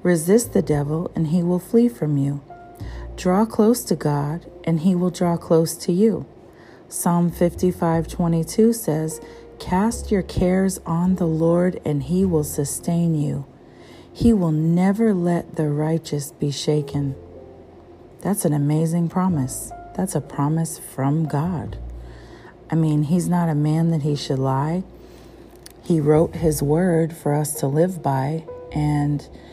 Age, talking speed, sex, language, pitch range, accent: 40-59, 145 wpm, female, English, 145-180 Hz, American